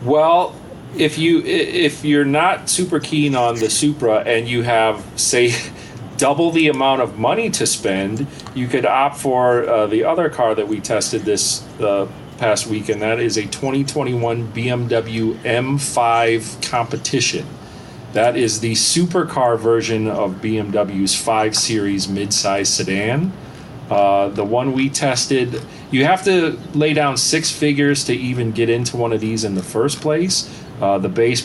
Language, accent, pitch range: English, American, 110-140 Hz